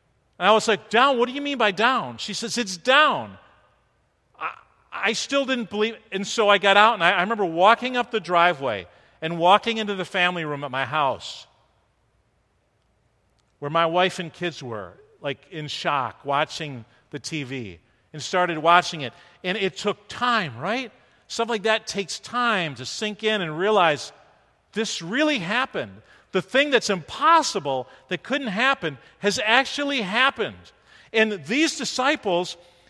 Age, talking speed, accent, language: 40-59, 160 wpm, American, English